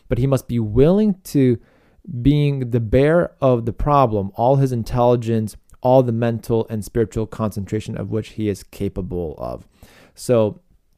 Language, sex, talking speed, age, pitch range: English, male, 155 wpm, 20-39, 100-130 Hz